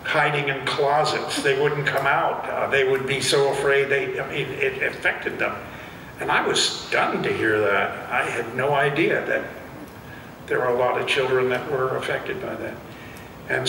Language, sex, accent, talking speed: English, male, American, 190 wpm